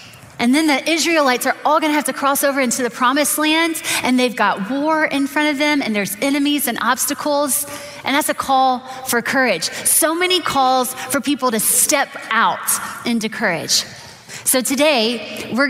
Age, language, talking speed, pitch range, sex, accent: 20-39, English, 185 wpm, 215-275 Hz, female, American